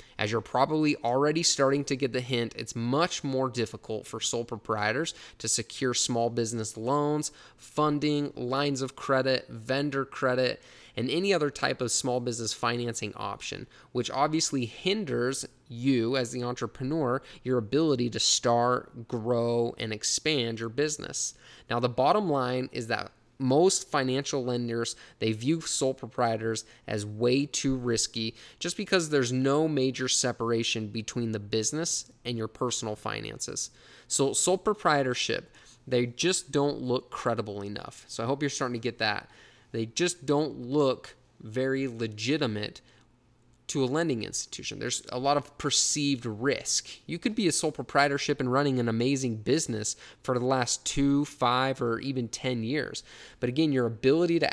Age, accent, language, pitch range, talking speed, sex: 20-39, American, English, 115-140 Hz, 155 wpm, male